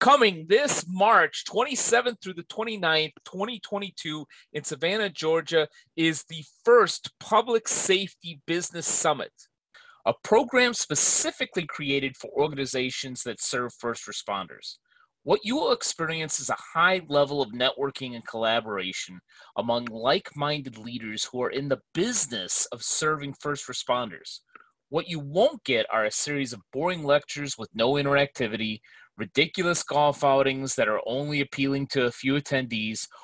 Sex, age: male, 30-49